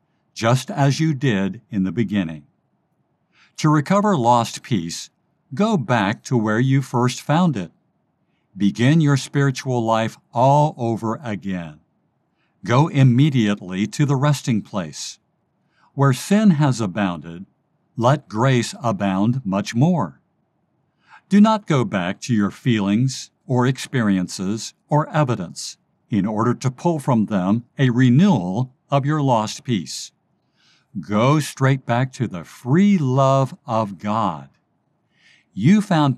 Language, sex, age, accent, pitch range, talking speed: English, male, 60-79, American, 110-150 Hz, 125 wpm